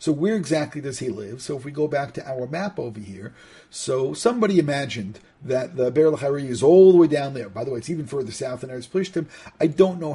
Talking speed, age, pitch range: 240 wpm, 50-69, 125-165 Hz